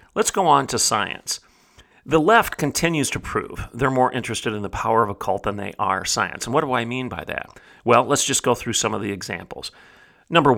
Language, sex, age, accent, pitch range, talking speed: English, male, 40-59, American, 110-145 Hz, 225 wpm